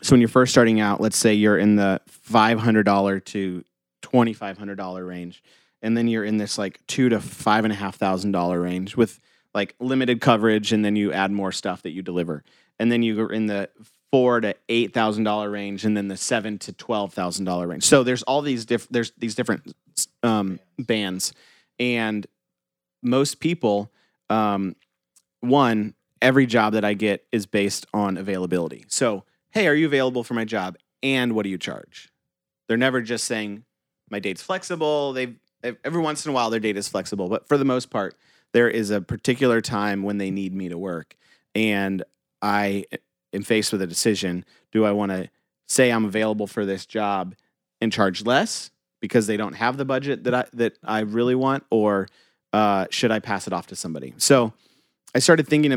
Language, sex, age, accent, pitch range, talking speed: English, male, 30-49, American, 100-120 Hz, 195 wpm